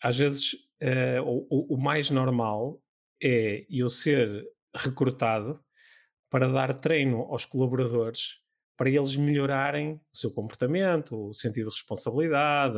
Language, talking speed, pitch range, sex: Portuguese, 115 wpm, 120-145 Hz, male